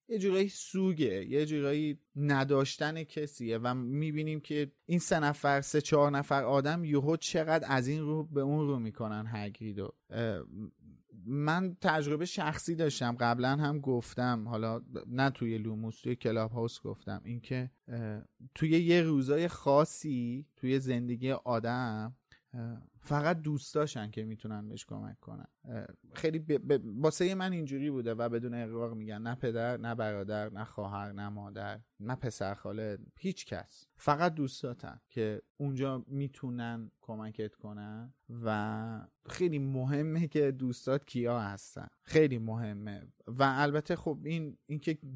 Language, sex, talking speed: Persian, male, 135 wpm